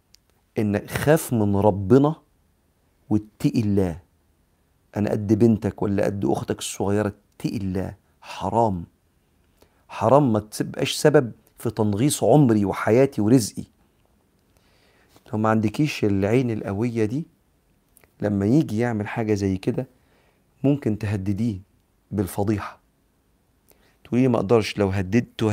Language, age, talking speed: Arabic, 40-59, 105 wpm